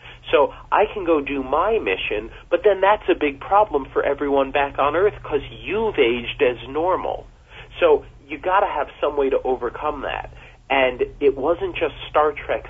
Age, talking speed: 40-59, 185 wpm